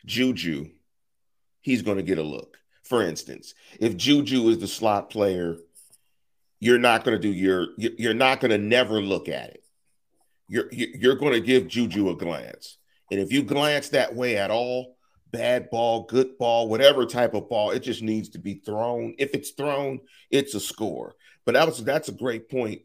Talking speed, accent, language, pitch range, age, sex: 190 wpm, American, English, 105-130 Hz, 40-59, male